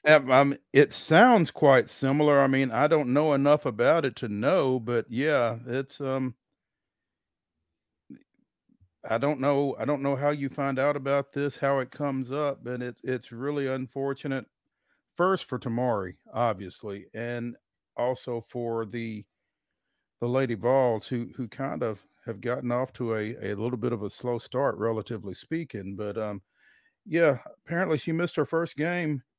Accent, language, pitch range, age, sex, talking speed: American, English, 110-140 Hz, 50-69, male, 160 wpm